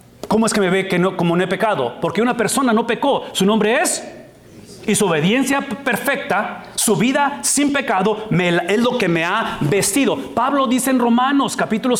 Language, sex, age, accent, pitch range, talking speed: English, male, 40-59, Mexican, 190-255 Hz, 190 wpm